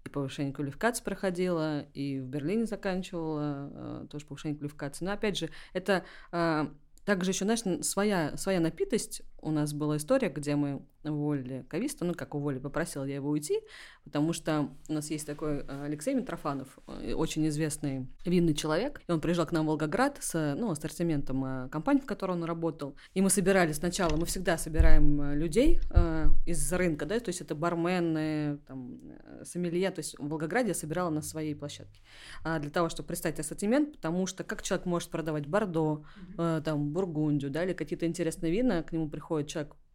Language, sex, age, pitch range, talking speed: Russian, female, 20-39, 150-190 Hz, 175 wpm